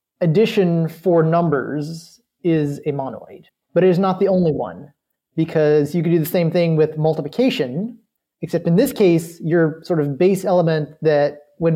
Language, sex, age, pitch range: English, male, 30-49, 145-180 Hz